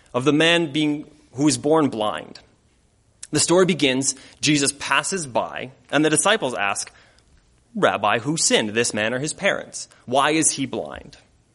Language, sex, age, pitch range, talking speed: English, male, 30-49, 120-155 Hz, 150 wpm